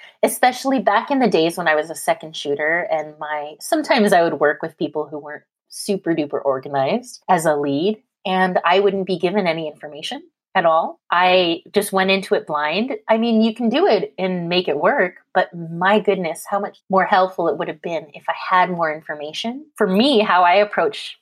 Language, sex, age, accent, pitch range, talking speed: English, female, 30-49, American, 160-215 Hz, 205 wpm